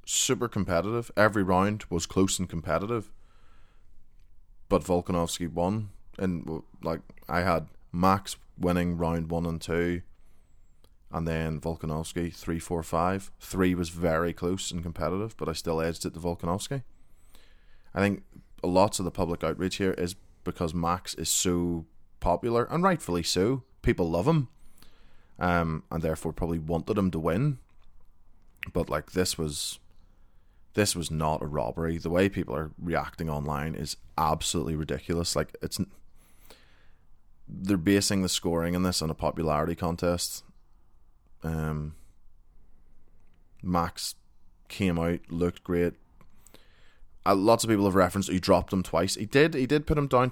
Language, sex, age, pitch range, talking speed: English, male, 20-39, 80-95 Hz, 145 wpm